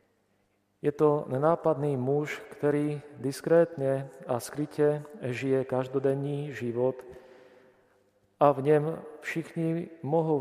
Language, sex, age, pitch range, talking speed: Slovak, male, 40-59, 120-145 Hz, 90 wpm